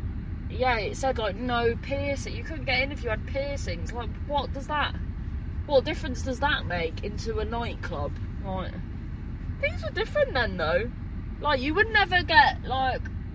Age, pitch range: 20-39, 85-100 Hz